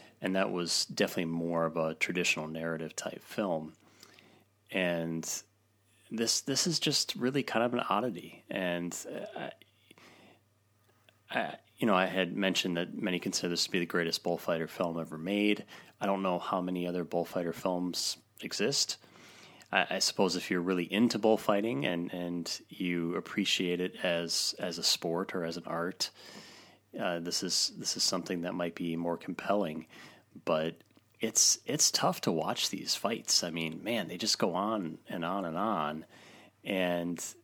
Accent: American